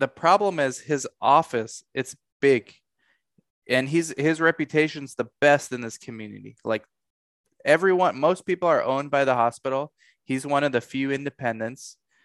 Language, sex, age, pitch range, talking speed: English, male, 20-39, 110-135 Hz, 150 wpm